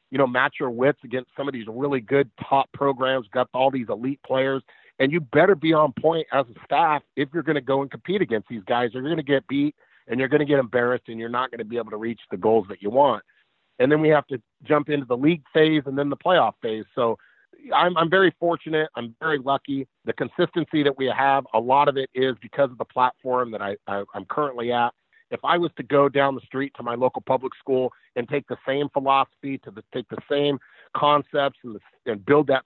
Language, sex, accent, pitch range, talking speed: English, male, American, 120-145 Hz, 245 wpm